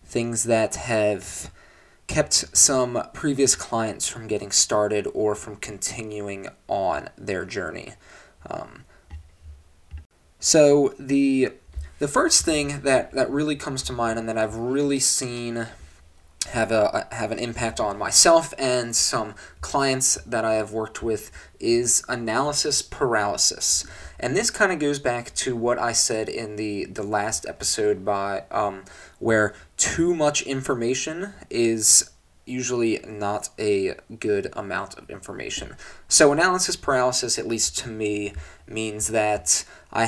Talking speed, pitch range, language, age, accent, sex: 135 wpm, 105-130 Hz, English, 20-39, American, male